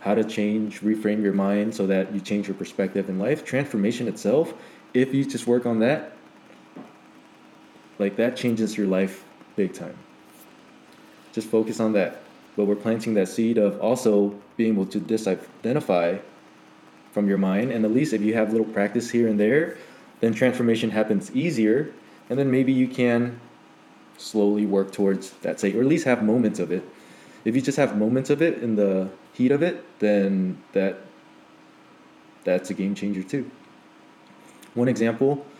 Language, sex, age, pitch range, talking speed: English, male, 20-39, 100-120 Hz, 165 wpm